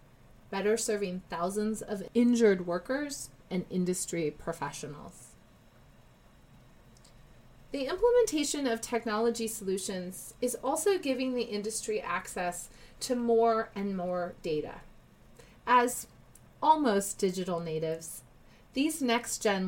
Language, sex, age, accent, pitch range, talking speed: English, female, 30-49, American, 175-230 Hz, 100 wpm